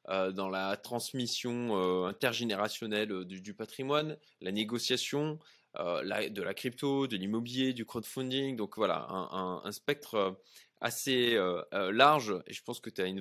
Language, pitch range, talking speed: French, 110-135 Hz, 165 wpm